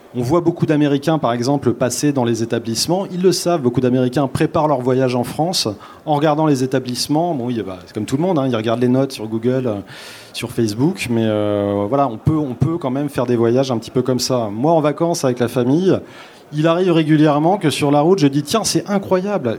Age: 30-49